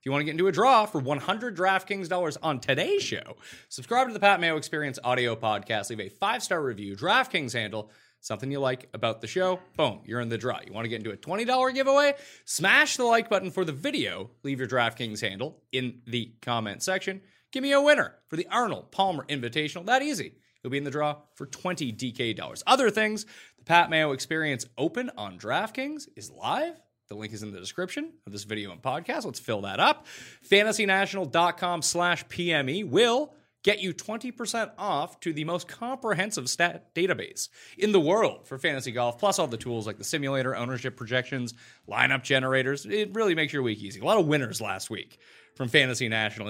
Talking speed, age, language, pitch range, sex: 200 wpm, 30-49, English, 120-195 Hz, male